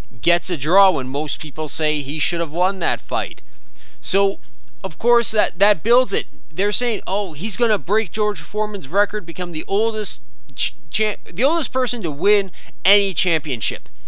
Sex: male